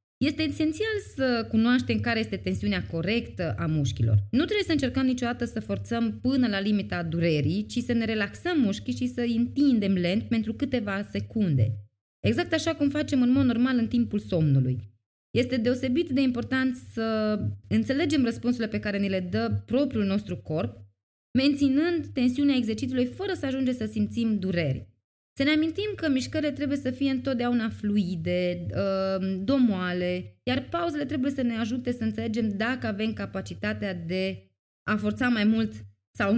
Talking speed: 160 wpm